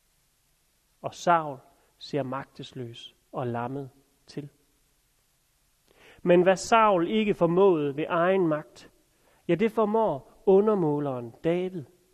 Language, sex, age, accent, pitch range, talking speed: Danish, male, 40-59, native, 150-190 Hz, 100 wpm